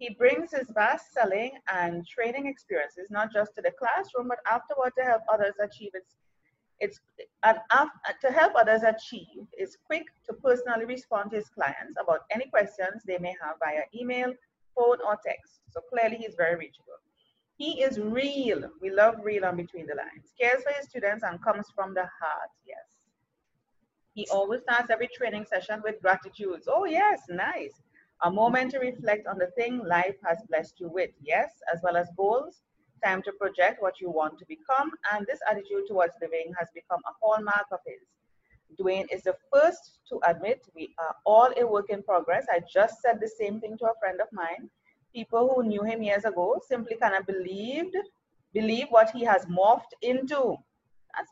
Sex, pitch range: female, 190-255 Hz